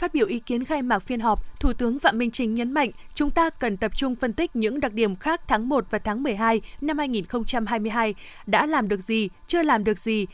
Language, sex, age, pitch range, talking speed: Vietnamese, female, 20-39, 220-285 Hz, 240 wpm